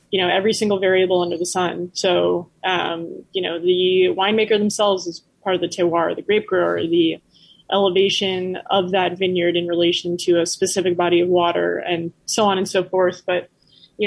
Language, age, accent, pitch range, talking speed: English, 20-39, American, 180-205 Hz, 190 wpm